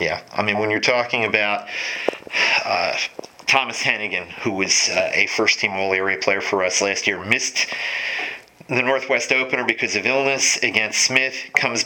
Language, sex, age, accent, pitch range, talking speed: English, male, 40-59, American, 105-115 Hz, 155 wpm